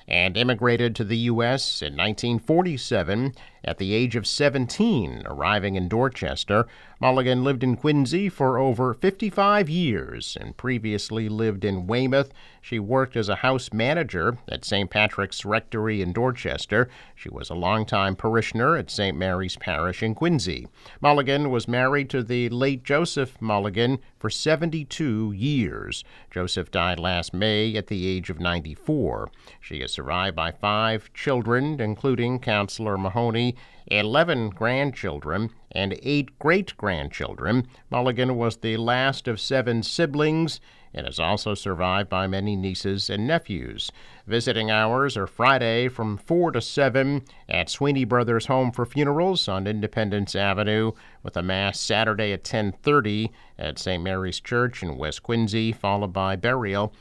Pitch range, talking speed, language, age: 100-130 Hz, 140 wpm, English, 50-69